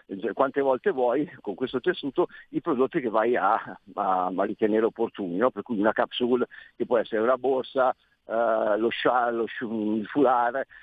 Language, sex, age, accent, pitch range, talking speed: Italian, male, 50-69, native, 115-170 Hz, 170 wpm